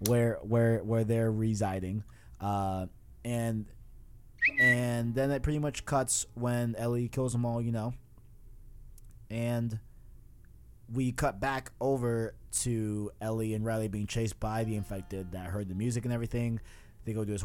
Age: 20-39